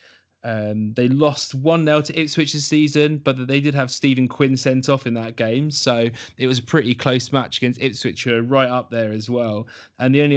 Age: 20-39